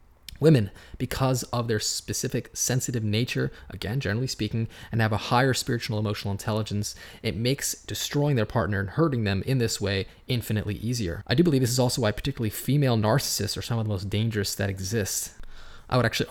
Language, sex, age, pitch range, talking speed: English, male, 20-39, 100-120 Hz, 190 wpm